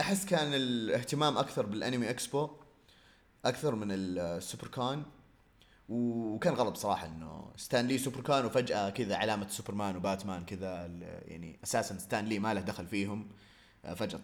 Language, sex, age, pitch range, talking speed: Arabic, male, 30-49, 100-135 Hz, 135 wpm